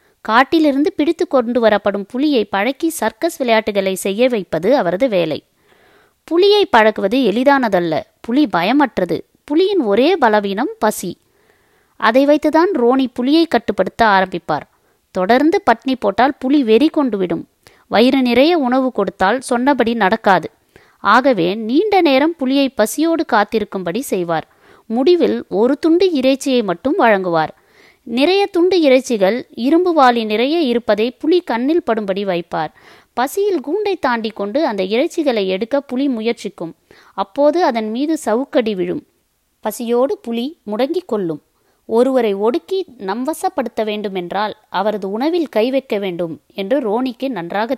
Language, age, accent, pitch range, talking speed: Tamil, 20-39, native, 205-295 Hz, 115 wpm